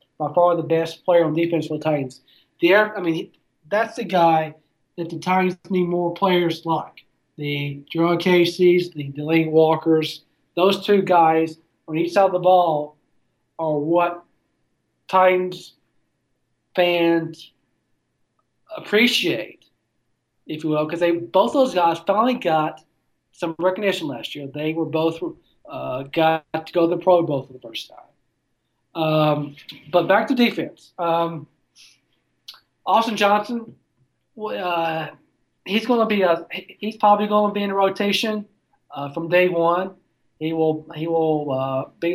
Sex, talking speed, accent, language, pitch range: male, 150 wpm, American, English, 155-185 Hz